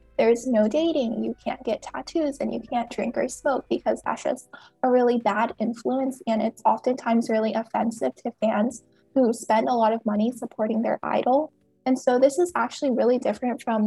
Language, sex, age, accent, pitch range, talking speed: English, female, 10-29, American, 220-265 Hz, 190 wpm